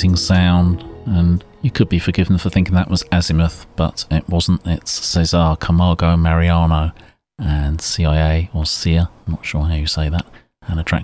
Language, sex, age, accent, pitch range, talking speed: English, male, 30-49, British, 80-95 Hz, 175 wpm